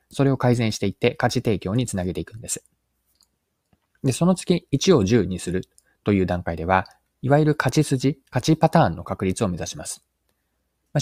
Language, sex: Japanese, male